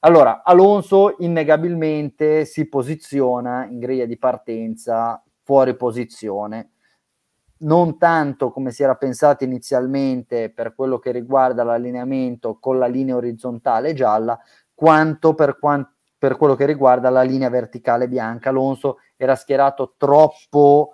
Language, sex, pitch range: Italian, male, 125-150 Hz